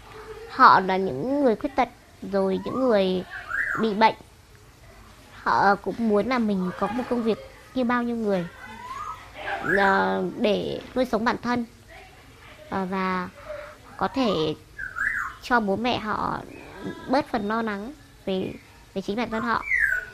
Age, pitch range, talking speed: 20-39, 190-250 Hz, 135 wpm